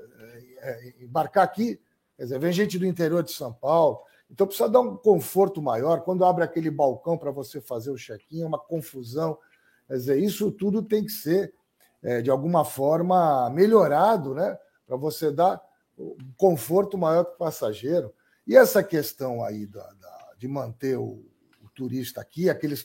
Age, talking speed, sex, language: 60-79, 160 wpm, male, Portuguese